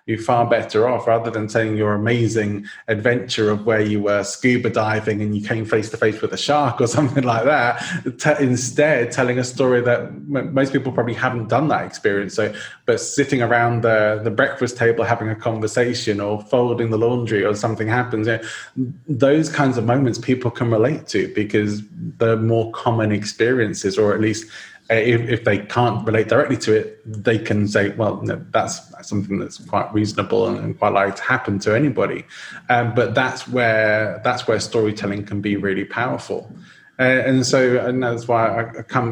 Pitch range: 105-120 Hz